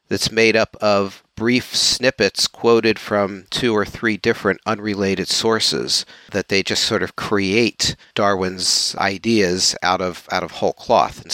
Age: 50-69